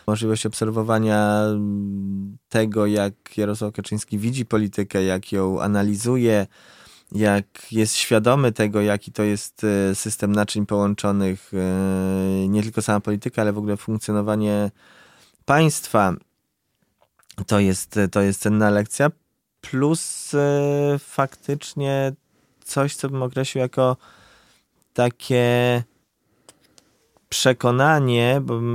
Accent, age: native, 20-39